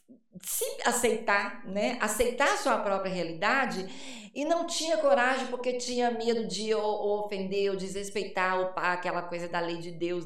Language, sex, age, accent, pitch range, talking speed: Portuguese, female, 20-39, Brazilian, 185-235 Hz, 165 wpm